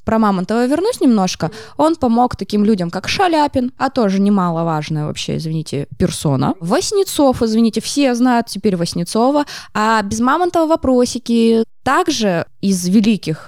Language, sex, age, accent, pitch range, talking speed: Russian, female, 20-39, native, 180-245 Hz, 130 wpm